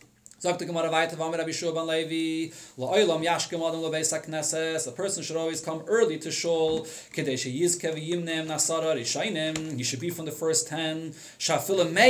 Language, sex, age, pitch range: English, male, 30-49, 160-225 Hz